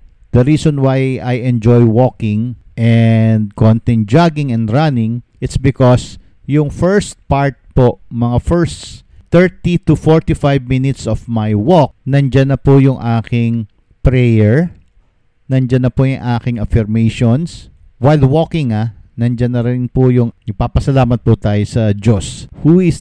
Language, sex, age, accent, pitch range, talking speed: English, male, 50-69, Filipino, 110-135 Hz, 140 wpm